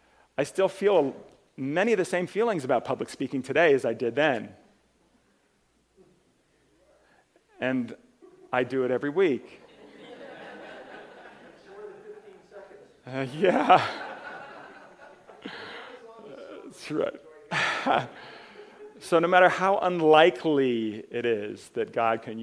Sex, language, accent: male, English, American